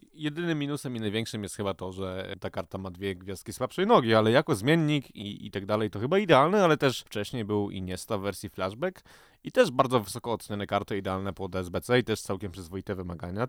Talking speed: 215 wpm